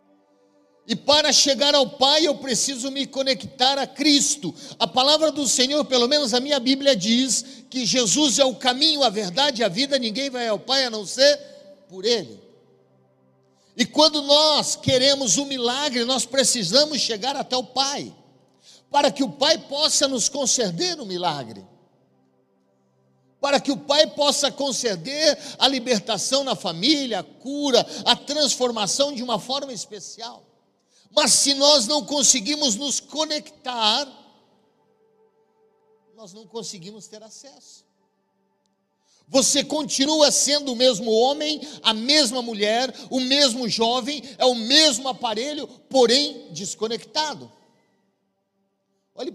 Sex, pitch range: male, 215-285 Hz